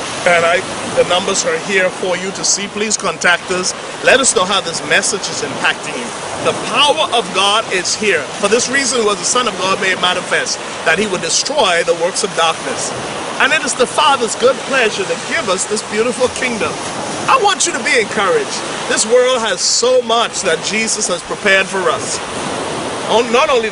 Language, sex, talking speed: English, male, 200 wpm